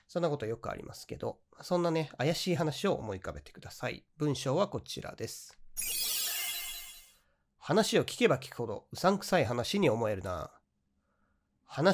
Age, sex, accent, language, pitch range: 40-59, male, native, Japanese, 110-170 Hz